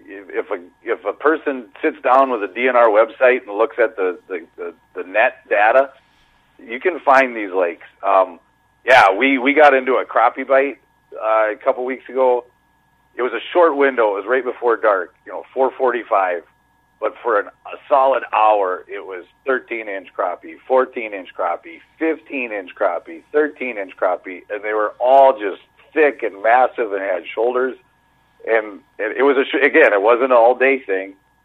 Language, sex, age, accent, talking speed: English, male, 40-59, American, 165 wpm